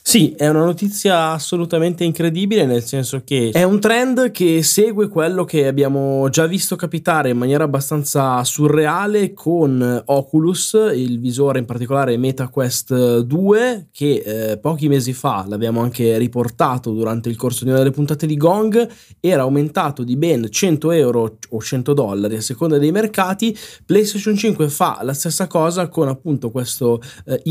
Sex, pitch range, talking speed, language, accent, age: male, 120-165 Hz, 155 wpm, Italian, native, 20-39